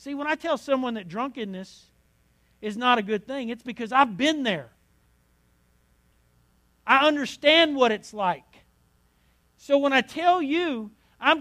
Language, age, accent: Italian, 50-69, American